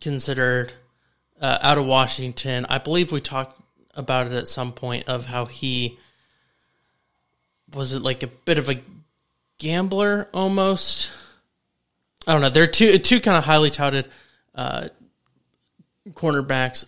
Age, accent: 20-39, American